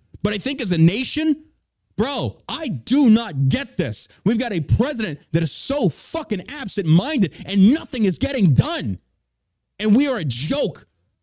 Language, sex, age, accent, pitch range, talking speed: English, male, 30-49, American, 155-240 Hz, 165 wpm